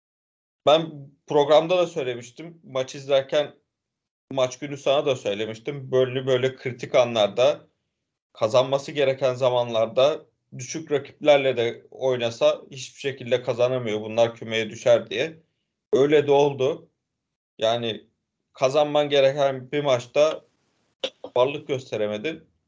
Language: Turkish